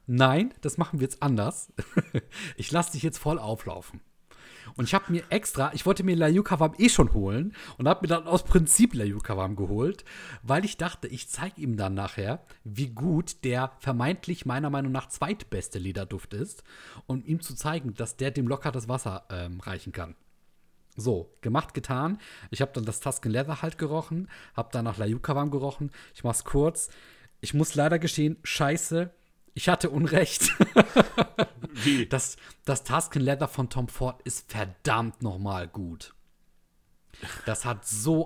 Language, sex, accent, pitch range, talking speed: German, male, German, 120-160 Hz, 165 wpm